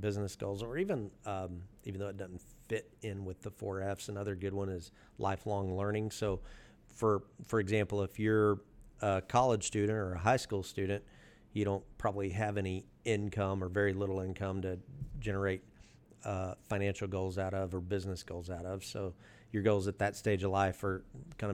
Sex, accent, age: male, American, 40-59